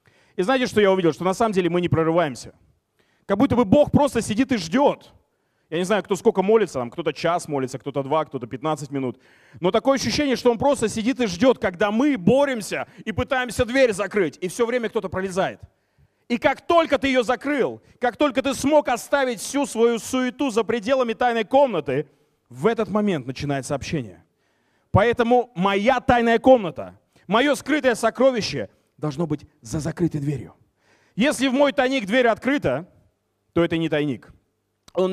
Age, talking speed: 30-49, 175 wpm